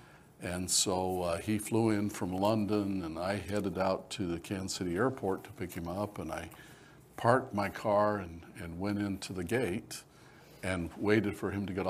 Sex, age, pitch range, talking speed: male, 60-79, 90-105 Hz, 190 wpm